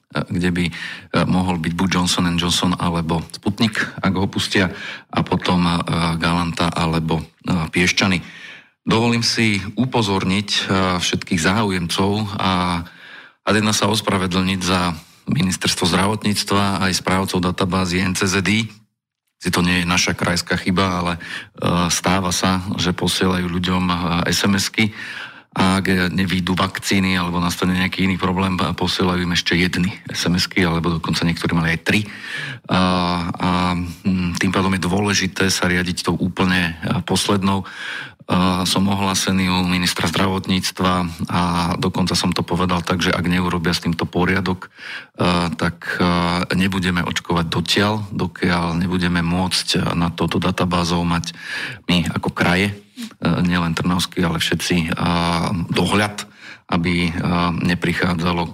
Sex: male